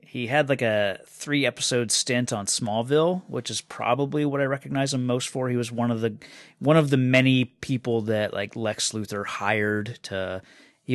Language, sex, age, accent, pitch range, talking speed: English, male, 30-49, American, 105-130 Hz, 190 wpm